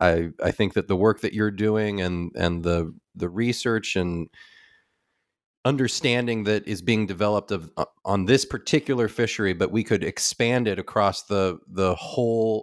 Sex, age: male, 30-49